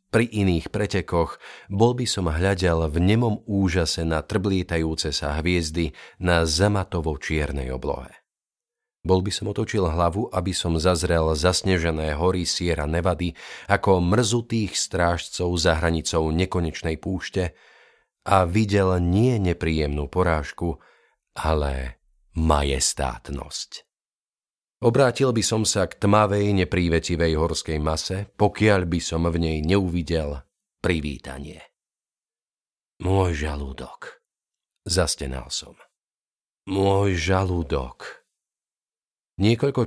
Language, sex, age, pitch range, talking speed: Slovak, male, 40-59, 80-100 Hz, 100 wpm